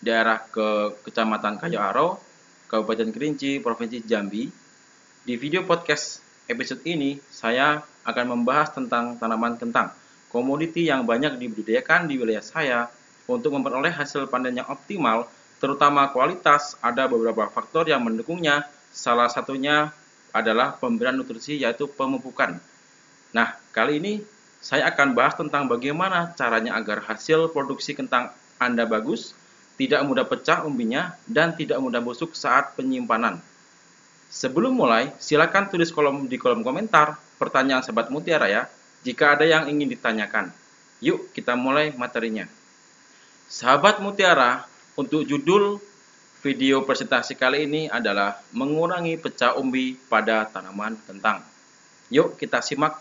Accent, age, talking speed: native, 20-39, 125 wpm